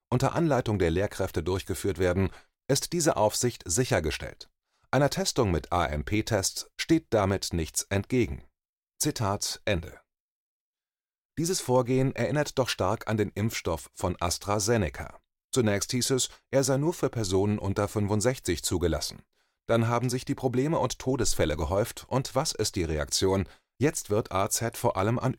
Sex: male